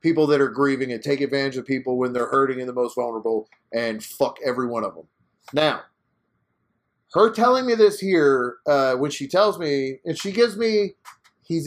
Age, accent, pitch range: 30-49, American, 125-160 Hz